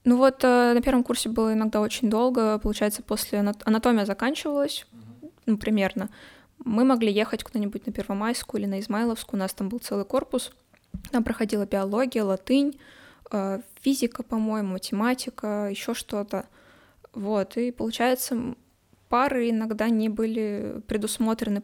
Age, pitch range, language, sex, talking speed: 10-29, 205-240 Hz, Russian, female, 130 wpm